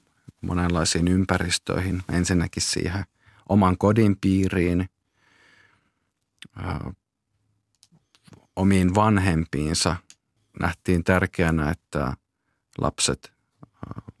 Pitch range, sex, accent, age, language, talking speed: 85-100 Hz, male, native, 50-69, Finnish, 55 wpm